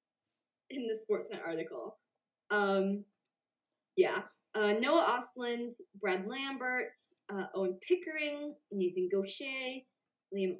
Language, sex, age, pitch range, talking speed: English, female, 20-39, 195-285 Hz, 95 wpm